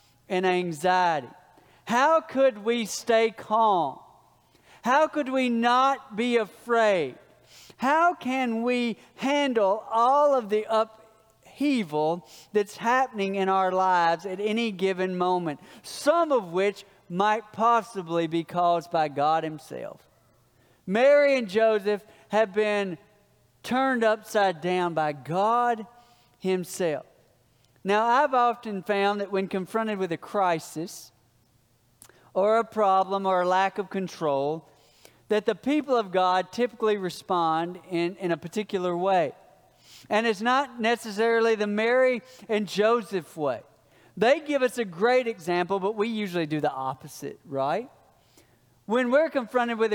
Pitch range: 180-230 Hz